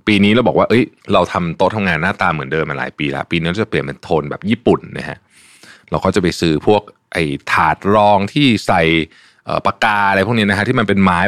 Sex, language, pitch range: male, Thai, 85-115 Hz